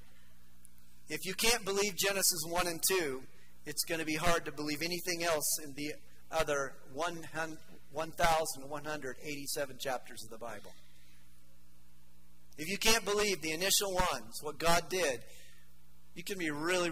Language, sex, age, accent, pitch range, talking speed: English, male, 40-59, American, 110-170 Hz, 140 wpm